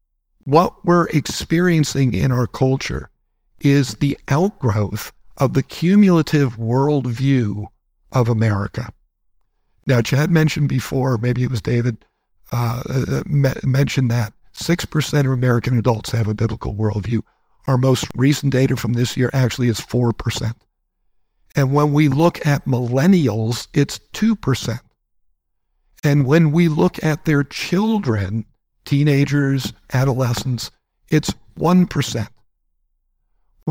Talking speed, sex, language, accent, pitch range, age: 110 wpm, male, English, American, 120-150 Hz, 60-79